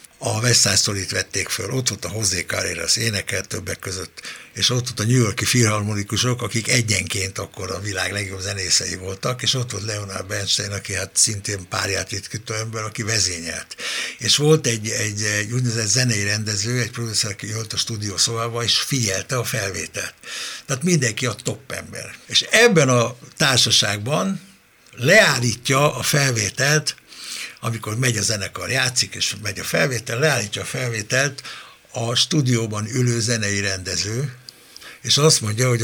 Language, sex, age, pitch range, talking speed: Hungarian, male, 60-79, 100-125 Hz, 150 wpm